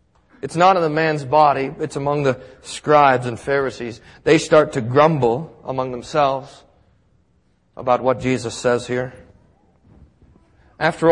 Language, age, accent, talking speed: English, 40-59, American, 130 wpm